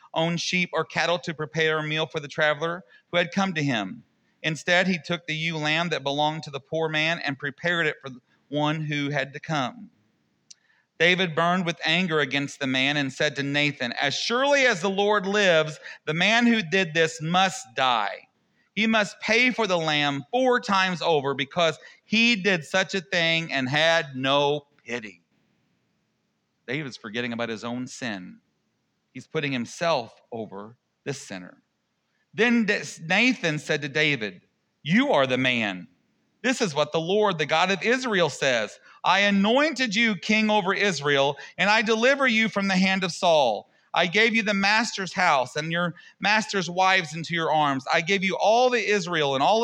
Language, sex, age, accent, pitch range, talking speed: English, male, 40-59, American, 150-200 Hz, 180 wpm